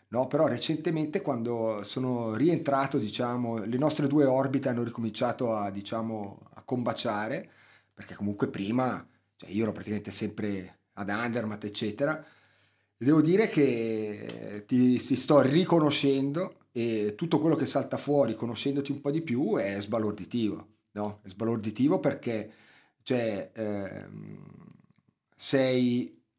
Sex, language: male, Italian